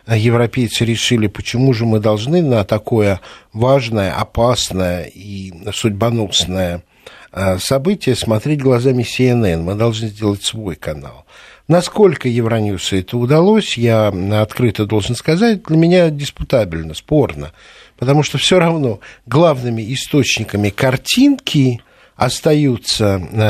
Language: Russian